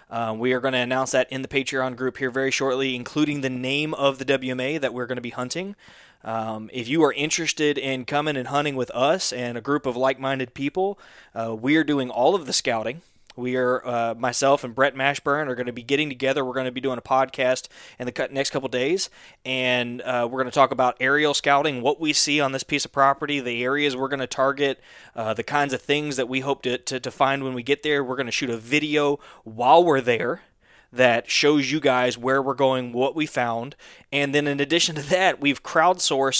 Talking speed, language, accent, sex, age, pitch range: 235 wpm, English, American, male, 20-39, 125-145 Hz